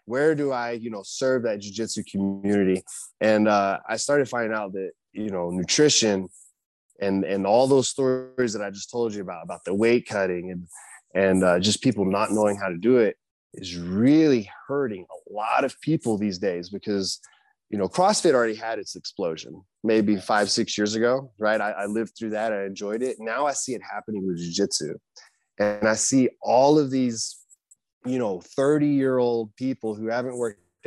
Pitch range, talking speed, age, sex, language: 100-130 Hz, 185 wpm, 20-39, male, English